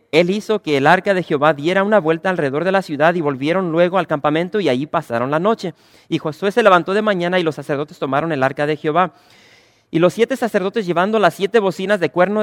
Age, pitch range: 40-59, 155-210 Hz